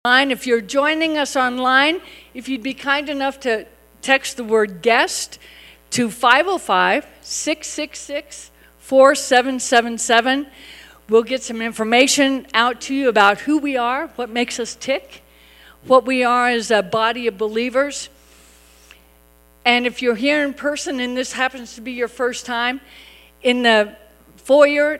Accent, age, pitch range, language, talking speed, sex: American, 50-69, 200-250 Hz, English, 135 wpm, female